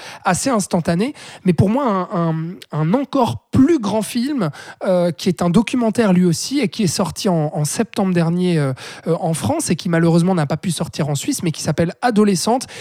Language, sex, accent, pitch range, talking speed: French, male, French, 170-220 Hz, 210 wpm